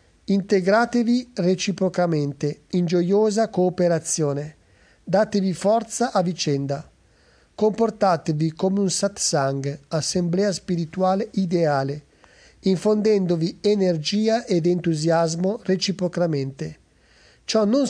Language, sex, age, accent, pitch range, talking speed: Italian, male, 40-59, native, 160-200 Hz, 75 wpm